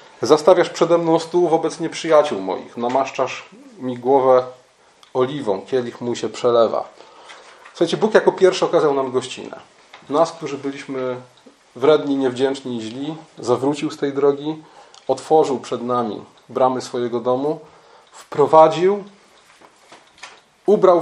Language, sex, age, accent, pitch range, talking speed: Polish, male, 30-49, native, 130-170 Hz, 115 wpm